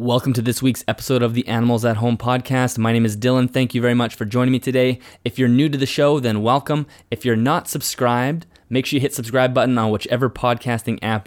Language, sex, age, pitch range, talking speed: English, male, 20-39, 110-125 Hz, 240 wpm